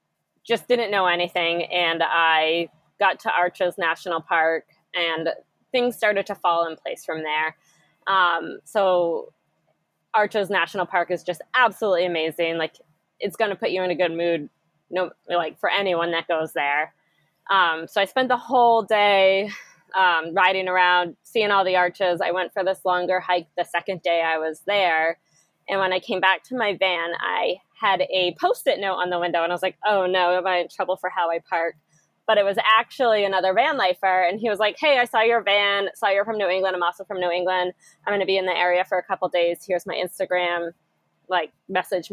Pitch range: 170-200 Hz